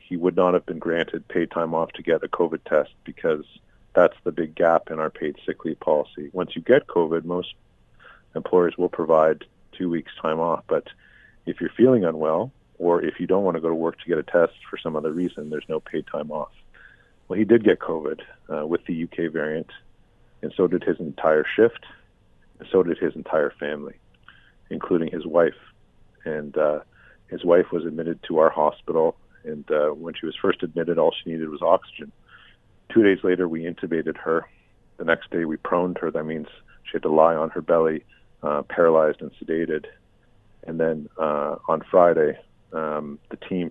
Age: 40-59